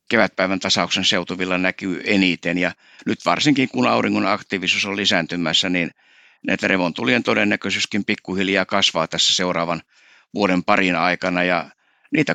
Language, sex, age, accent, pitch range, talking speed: Finnish, male, 60-79, native, 90-105 Hz, 125 wpm